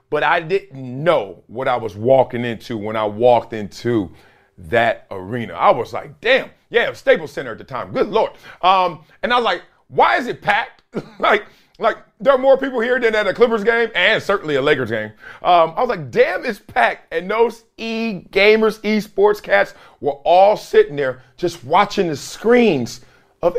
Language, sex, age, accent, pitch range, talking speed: English, male, 40-59, American, 155-240 Hz, 190 wpm